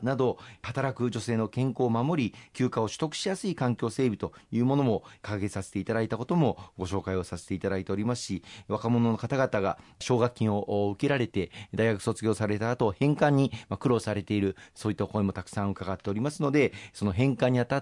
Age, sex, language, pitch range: 40-59, male, Japanese, 100-125 Hz